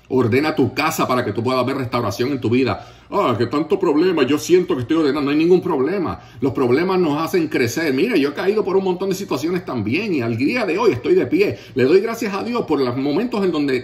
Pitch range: 110-145 Hz